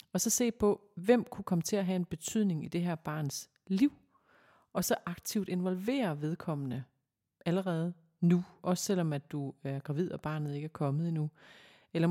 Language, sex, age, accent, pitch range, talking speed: Danish, female, 30-49, native, 155-195 Hz, 185 wpm